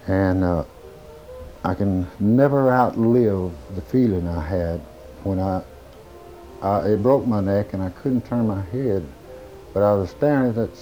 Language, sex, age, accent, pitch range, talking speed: English, male, 60-79, American, 85-105 Hz, 160 wpm